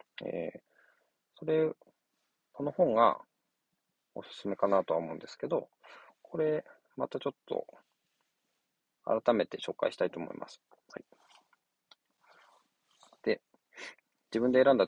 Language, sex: Japanese, male